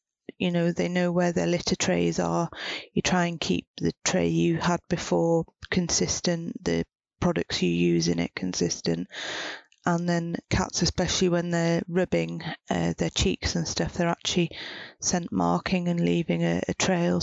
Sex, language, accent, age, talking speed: female, English, British, 30-49, 165 wpm